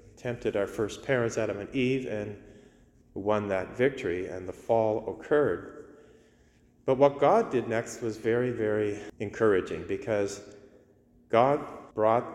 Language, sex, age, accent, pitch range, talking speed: English, male, 40-59, American, 100-125 Hz, 130 wpm